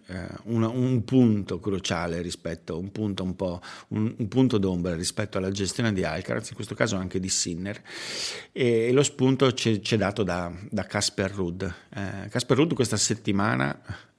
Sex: male